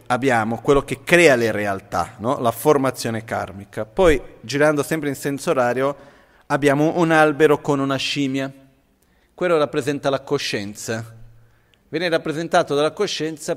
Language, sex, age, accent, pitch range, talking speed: Italian, male, 40-59, native, 115-140 Hz, 135 wpm